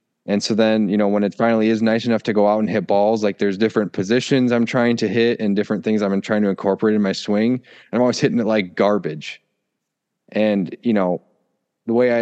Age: 20-39